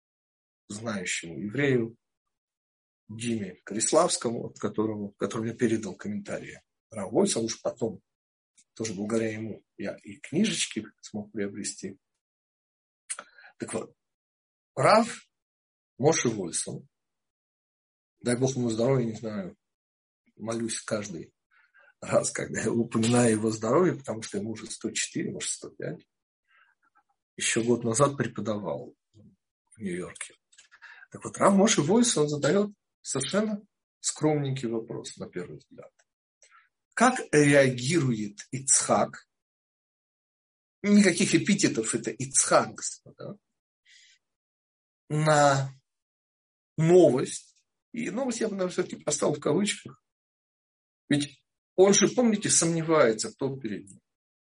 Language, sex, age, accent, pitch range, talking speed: Russian, male, 50-69, native, 110-160 Hz, 100 wpm